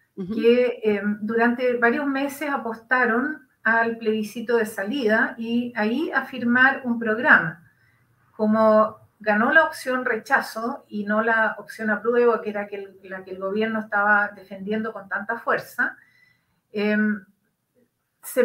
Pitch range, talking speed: 220-270 Hz, 130 wpm